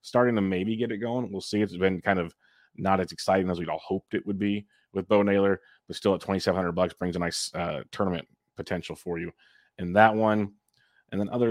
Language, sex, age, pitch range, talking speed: English, male, 30-49, 90-100 Hz, 230 wpm